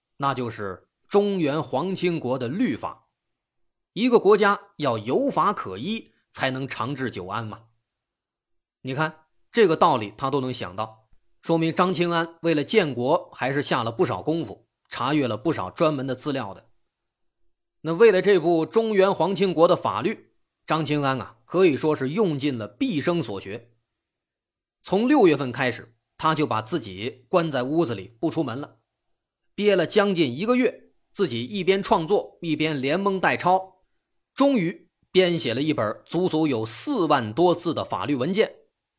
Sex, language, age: male, Chinese, 20-39